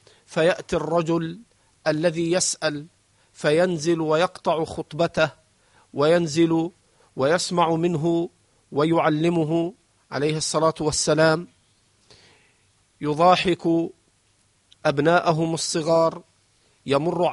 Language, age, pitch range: Arabic, 50-69, 140-170 Hz